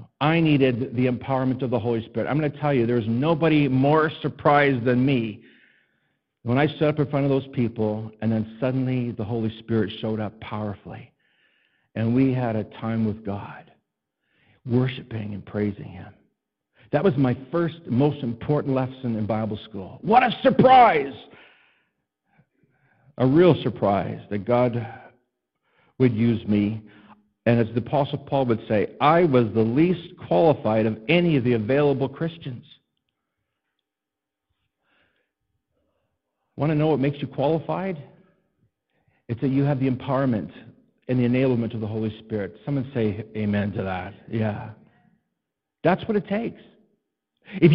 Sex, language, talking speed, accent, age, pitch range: male, English, 150 wpm, American, 60-79, 110-155 Hz